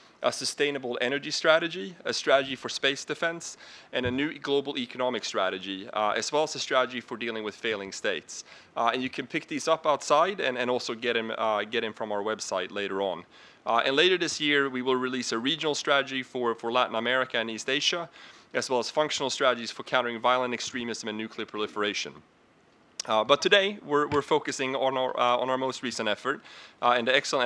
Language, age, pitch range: English, 30-49, 115-140 Hz